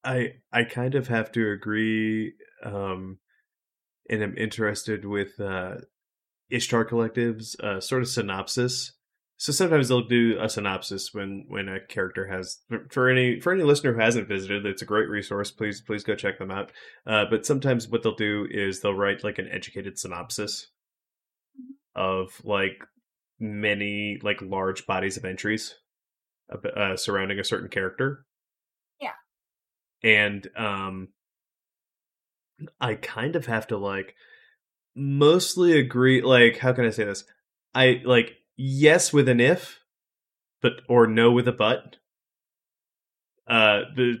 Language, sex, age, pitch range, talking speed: English, male, 20-39, 100-125 Hz, 145 wpm